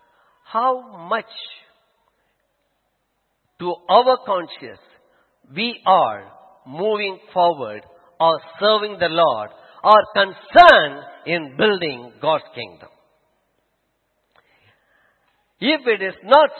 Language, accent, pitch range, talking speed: English, Indian, 175-250 Hz, 85 wpm